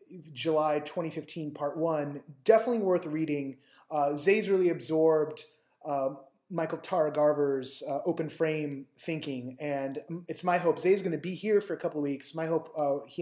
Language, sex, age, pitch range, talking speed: English, male, 20-39, 150-205 Hz, 170 wpm